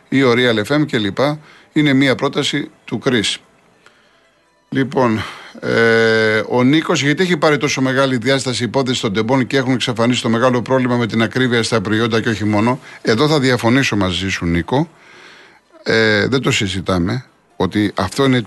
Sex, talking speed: male, 160 wpm